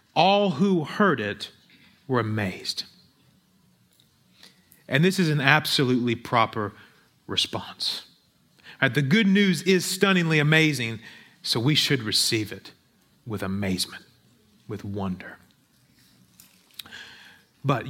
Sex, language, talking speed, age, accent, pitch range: male, English, 95 wpm, 30-49, American, 115-180 Hz